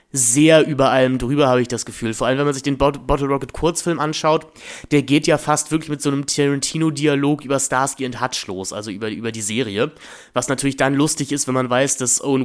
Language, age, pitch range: German, 20-39, 125-145 Hz